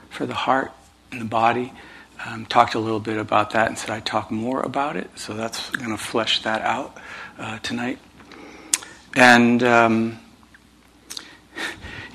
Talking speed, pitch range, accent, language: 160 wpm, 105-120 Hz, American, English